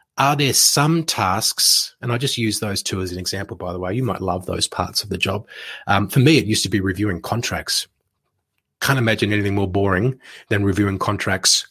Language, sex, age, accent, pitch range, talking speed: English, male, 30-49, Australian, 100-125 Hz, 210 wpm